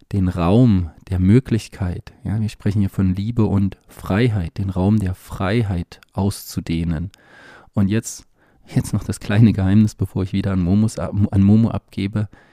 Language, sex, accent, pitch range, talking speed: German, male, German, 95-110 Hz, 155 wpm